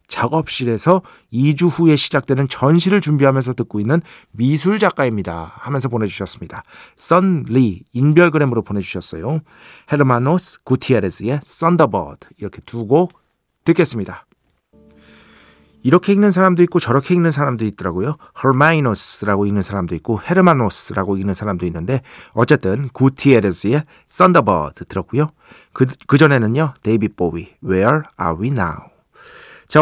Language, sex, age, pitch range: Korean, male, 40-59, 100-155 Hz